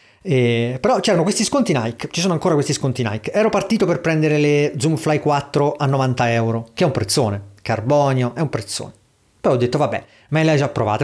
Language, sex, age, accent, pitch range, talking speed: Italian, male, 40-59, native, 120-155 Hz, 210 wpm